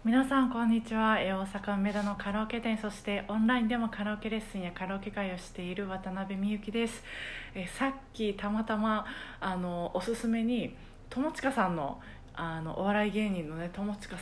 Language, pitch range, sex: Japanese, 175-225 Hz, female